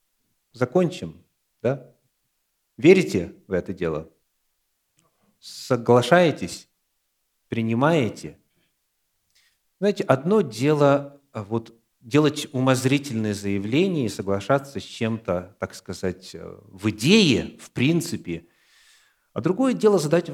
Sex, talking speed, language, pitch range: male, 85 wpm, Russian, 95-145 Hz